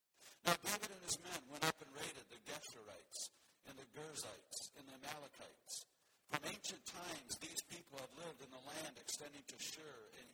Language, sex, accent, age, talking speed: English, male, American, 60-79, 180 wpm